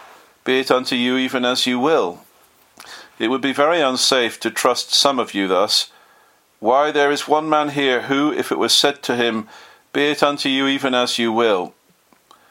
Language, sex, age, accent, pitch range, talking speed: English, male, 50-69, British, 120-145 Hz, 190 wpm